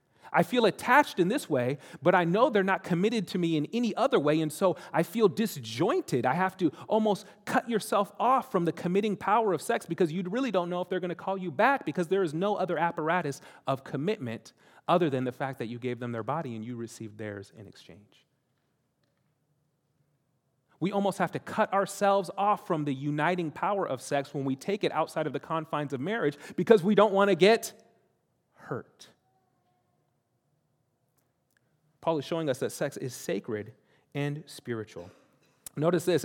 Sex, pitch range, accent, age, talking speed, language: male, 145-210 Hz, American, 30-49, 190 wpm, English